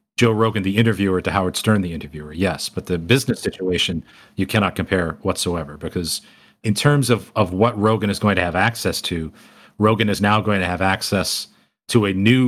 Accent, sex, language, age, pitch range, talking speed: American, male, English, 40-59, 95-115 Hz, 195 wpm